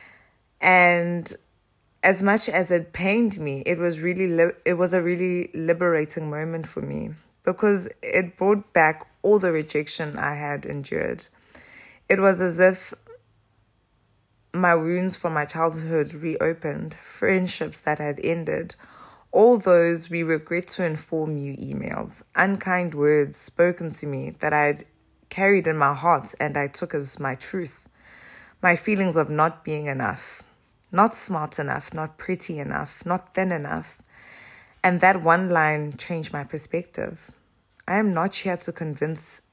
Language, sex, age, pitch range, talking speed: English, female, 20-39, 145-180 Hz, 145 wpm